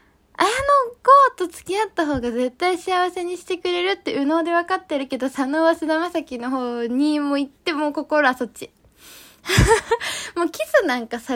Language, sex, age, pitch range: Japanese, female, 10-29, 240-340 Hz